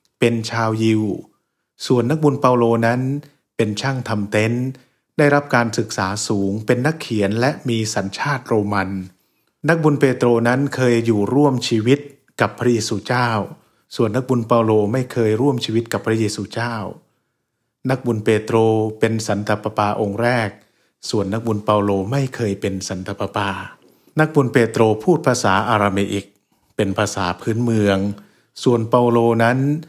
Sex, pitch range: male, 105-125 Hz